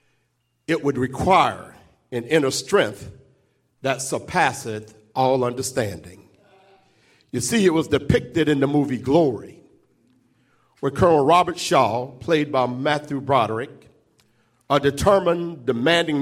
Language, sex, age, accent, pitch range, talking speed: English, male, 50-69, American, 125-165 Hz, 110 wpm